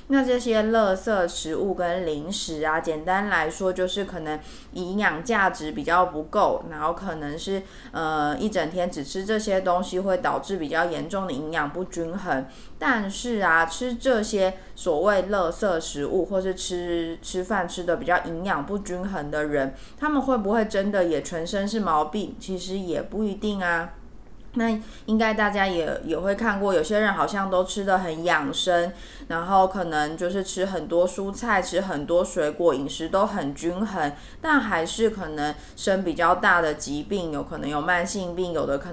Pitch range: 165-205 Hz